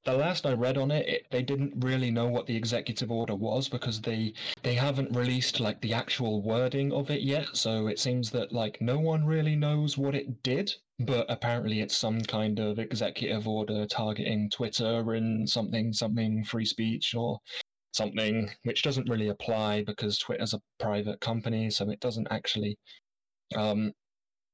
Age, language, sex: 20-39, English, male